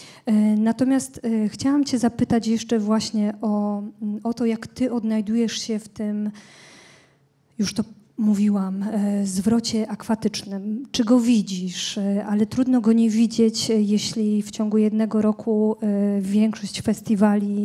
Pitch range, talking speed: 200-220 Hz, 120 wpm